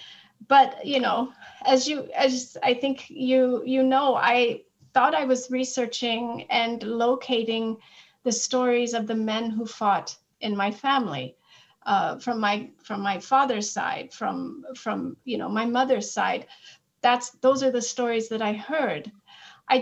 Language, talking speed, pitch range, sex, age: English, 155 wpm, 230-265 Hz, female, 40-59